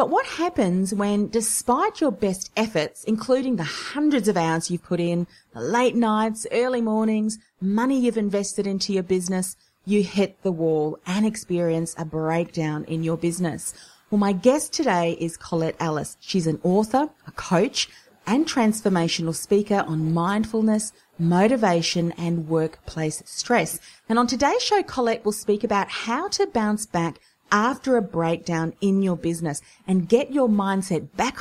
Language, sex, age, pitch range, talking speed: English, female, 30-49, 170-235 Hz, 155 wpm